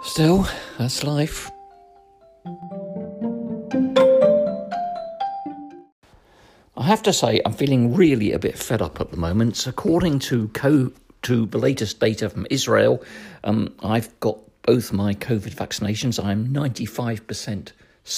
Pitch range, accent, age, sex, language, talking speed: 105-170 Hz, British, 50-69, male, English, 110 wpm